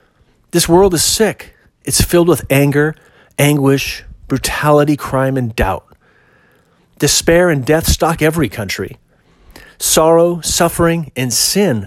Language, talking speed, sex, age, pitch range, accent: English, 115 wpm, male, 40-59, 125-180 Hz, American